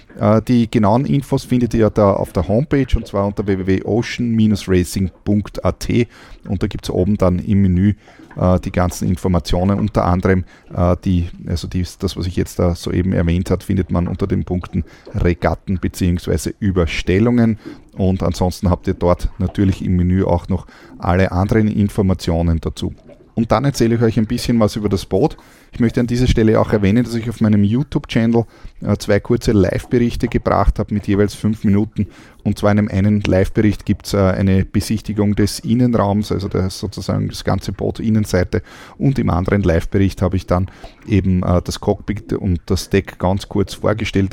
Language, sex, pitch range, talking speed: German, male, 90-110 Hz, 170 wpm